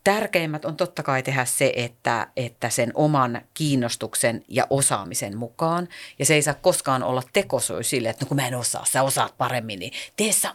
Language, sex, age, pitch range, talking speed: Finnish, female, 40-59, 125-160 Hz, 190 wpm